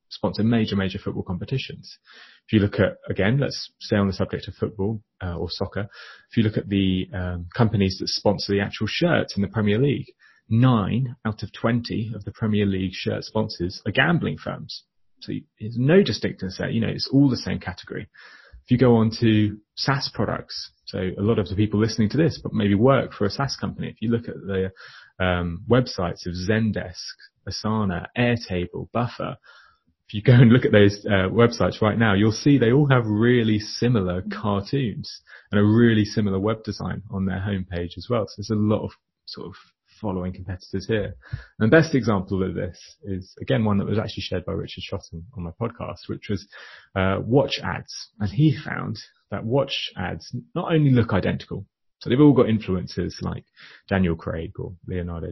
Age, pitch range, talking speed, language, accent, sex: 30-49, 95-115 Hz, 195 wpm, English, British, male